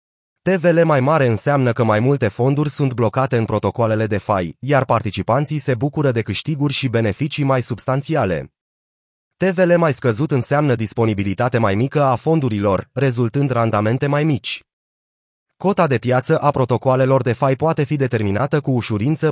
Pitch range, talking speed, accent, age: 115-145 Hz, 150 wpm, native, 30-49